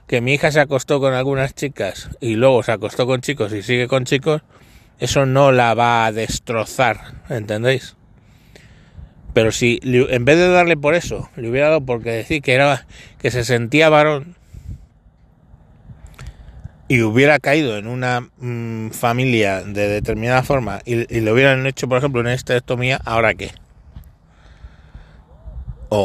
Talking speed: 155 wpm